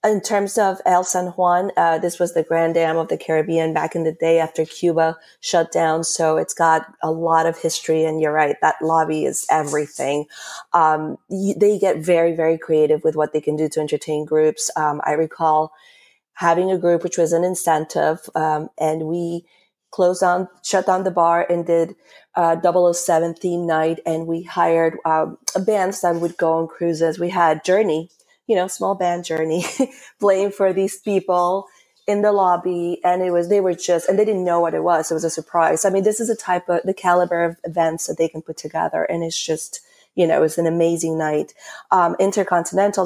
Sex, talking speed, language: female, 205 wpm, English